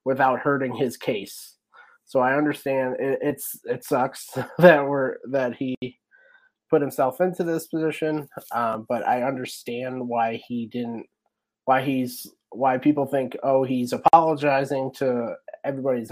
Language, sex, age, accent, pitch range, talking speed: English, male, 30-49, American, 115-145 Hz, 135 wpm